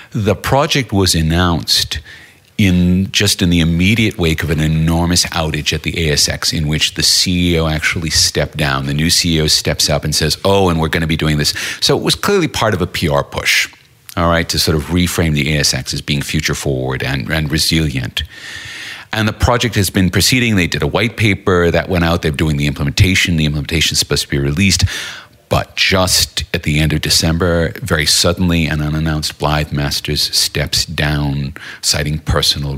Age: 40-59